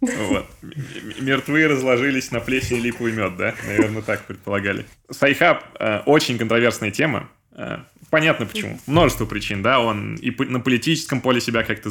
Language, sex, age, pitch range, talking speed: Russian, male, 20-39, 105-135 Hz, 135 wpm